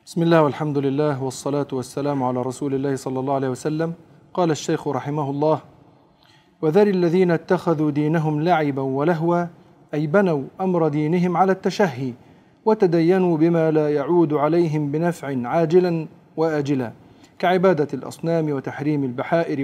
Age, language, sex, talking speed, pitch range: 40-59, Arabic, male, 125 wpm, 150-185 Hz